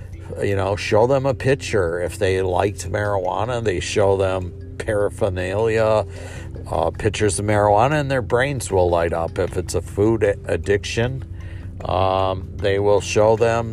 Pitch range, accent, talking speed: 95-110 Hz, American, 150 wpm